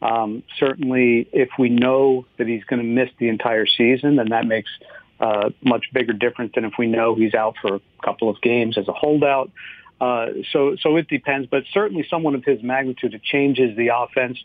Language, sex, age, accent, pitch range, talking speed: English, male, 50-69, American, 120-140 Hz, 210 wpm